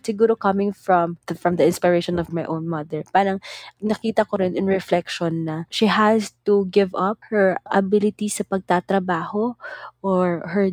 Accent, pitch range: Filipino, 165-190 Hz